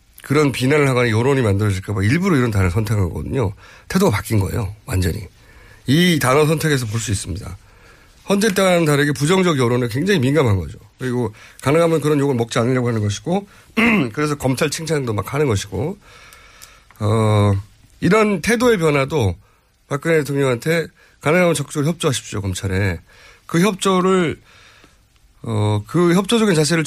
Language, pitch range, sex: Korean, 105-165 Hz, male